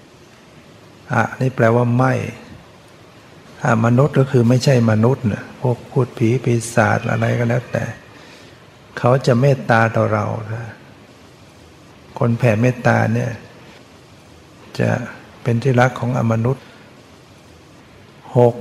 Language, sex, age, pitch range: Thai, male, 60-79, 110-125 Hz